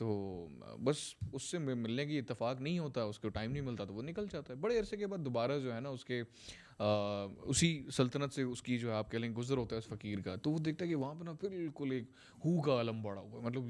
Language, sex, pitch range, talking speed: Urdu, male, 115-155 Hz, 270 wpm